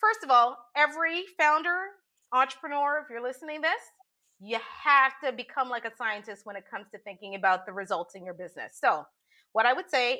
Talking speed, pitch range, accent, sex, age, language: 200 wpm, 220-305 Hz, American, female, 30-49, English